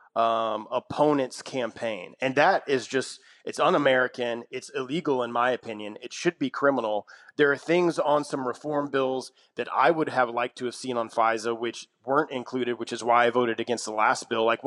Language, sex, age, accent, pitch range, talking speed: English, male, 30-49, American, 120-150 Hz, 195 wpm